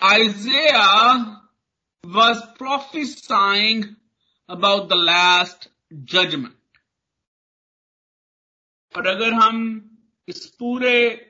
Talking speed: 70 wpm